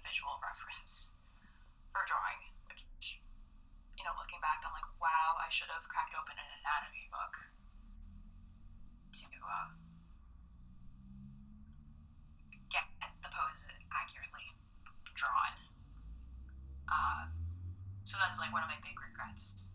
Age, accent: 20-39, American